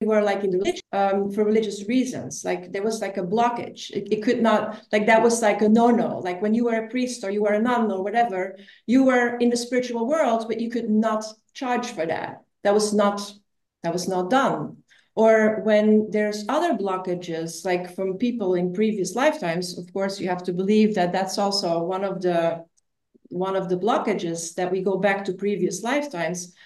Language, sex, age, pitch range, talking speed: English, female, 40-59, 190-240 Hz, 205 wpm